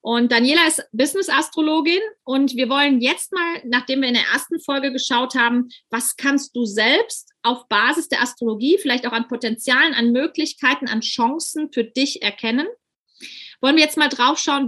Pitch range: 235-305 Hz